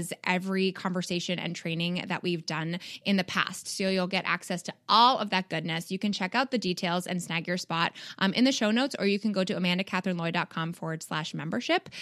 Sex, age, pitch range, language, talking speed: female, 20-39, 170-210 Hz, English, 215 wpm